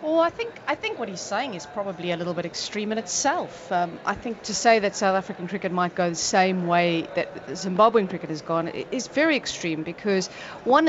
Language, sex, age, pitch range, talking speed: English, female, 30-49, 175-230 Hz, 220 wpm